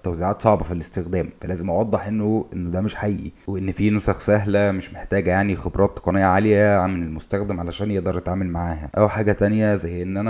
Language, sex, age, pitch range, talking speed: Arabic, male, 20-39, 90-110 Hz, 190 wpm